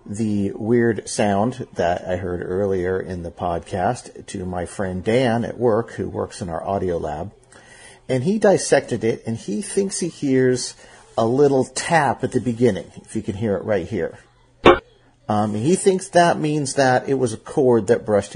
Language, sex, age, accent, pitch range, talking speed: English, male, 50-69, American, 95-125 Hz, 185 wpm